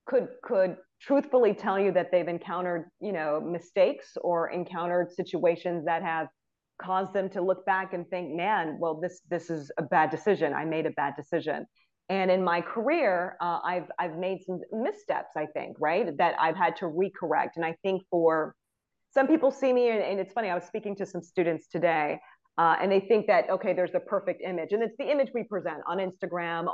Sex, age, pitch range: female, 40-59, 170-200 Hz